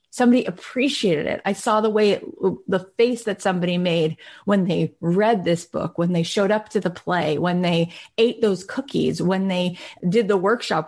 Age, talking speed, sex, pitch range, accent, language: 30-49, 195 wpm, female, 175-225 Hz, American, English